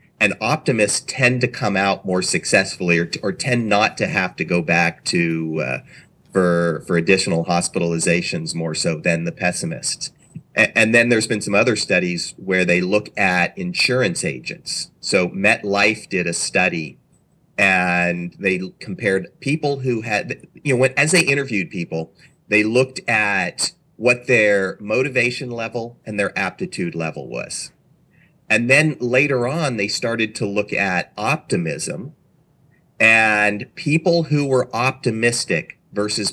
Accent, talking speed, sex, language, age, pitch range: American, 145 wpm, male, English, 40-59, 95-130 Hz